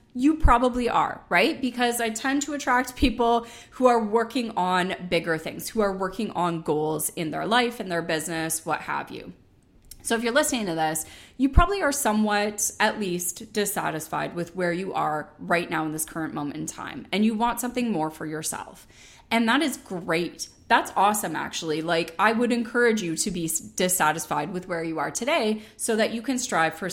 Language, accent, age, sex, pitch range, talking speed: English, American, 20-39, female, 165-240 Hz, 195 wpm